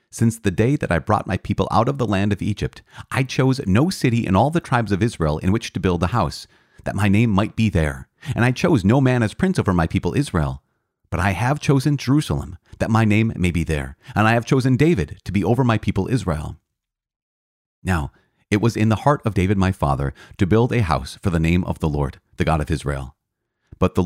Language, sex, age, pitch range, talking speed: English, male, 40-59, 85-115 Hz, 235 wpm